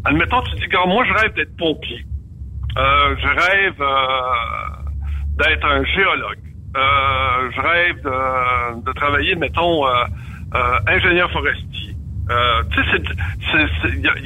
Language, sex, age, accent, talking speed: French, male, 60-79, French, 125 wpm